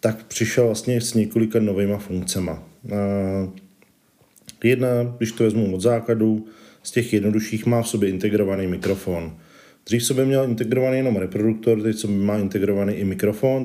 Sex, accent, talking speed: male, native, 140 wpm